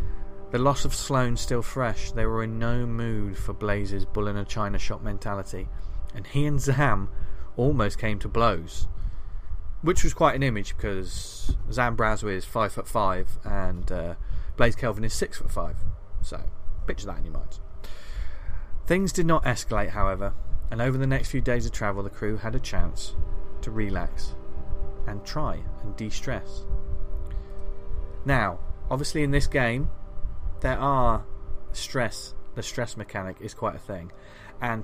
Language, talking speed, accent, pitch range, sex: English, 160 wpm, British, 95-125 Hz, male